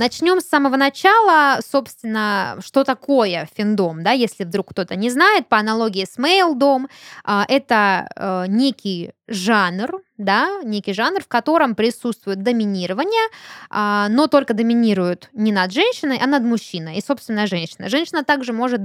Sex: female